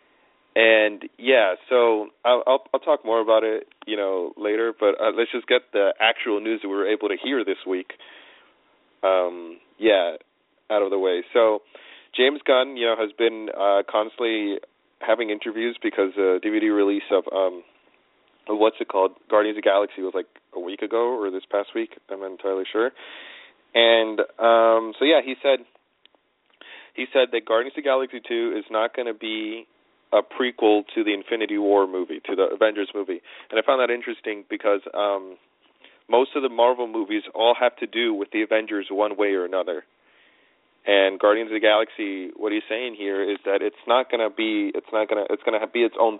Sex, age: male, 30-49